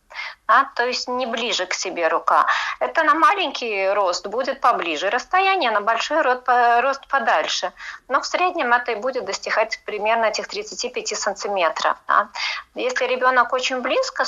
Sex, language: female, Russian